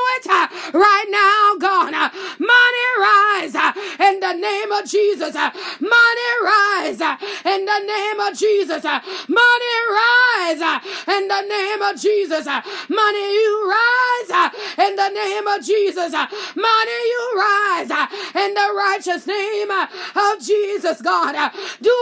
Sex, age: female, 20-39